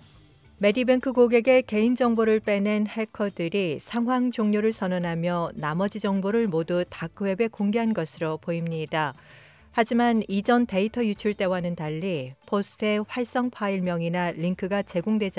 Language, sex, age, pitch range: Korean, female, 40-59, 165-225 Hz